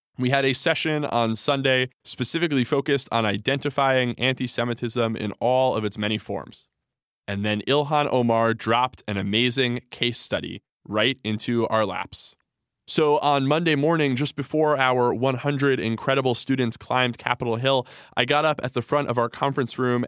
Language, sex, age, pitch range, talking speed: English, male, 20-39, 115-140 Hz, 160 wpm